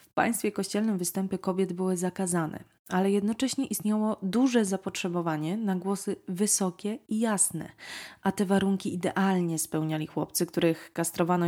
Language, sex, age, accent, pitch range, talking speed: Polish, female, 20-39, native, 175-205 Hz, 130 wpm